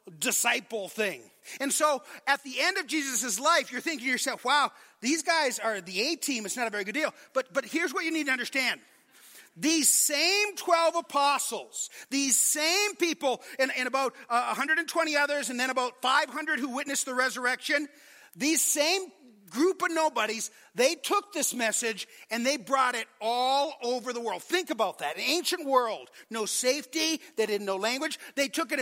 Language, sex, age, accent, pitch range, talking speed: English, male, 40-59, American, 245-315 Hz, 180 wpm